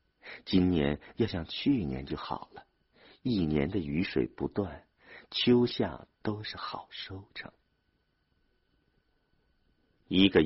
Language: Chinese